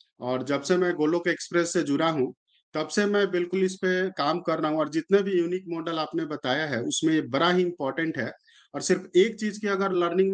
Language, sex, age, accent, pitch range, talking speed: Hindi, male, 50-69, native, 160-195 Hz, 225 wpm